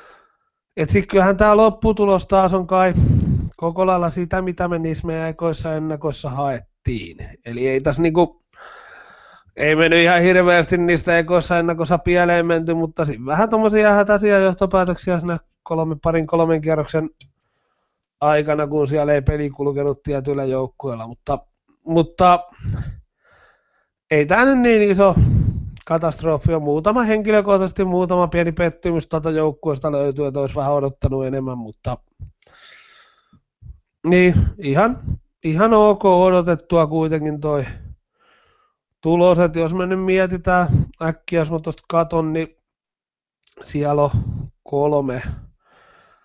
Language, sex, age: Finnish, male, 30-49